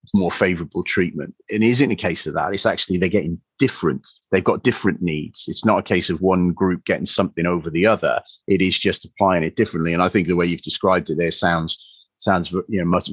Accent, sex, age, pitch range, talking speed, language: British, male, 30-49, 85-110 Hz, 230 wpm, English